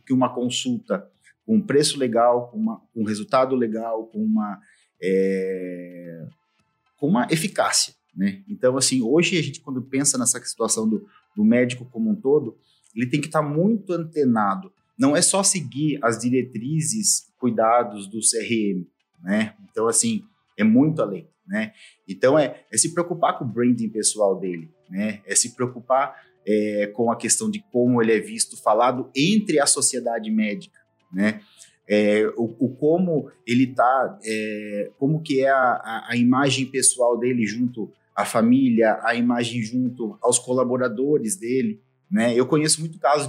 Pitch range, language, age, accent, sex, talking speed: 110-175 Hz, Portuguese, 30-49, Brazilian, male, 150 wpm